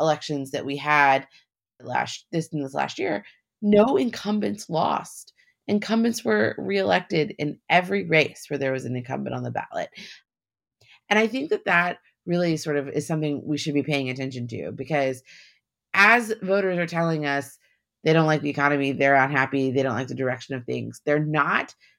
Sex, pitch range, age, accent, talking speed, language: female, 135-185 Hz, 30-49, American, 175 wpm, English